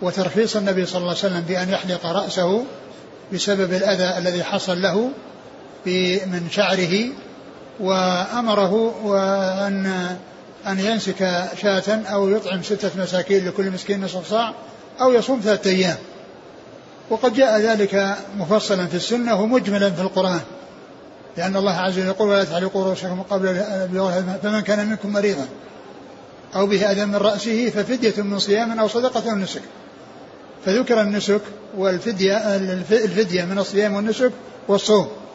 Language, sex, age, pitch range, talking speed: Arabic, male, 60-79, 190-215 Hz, 130 wpm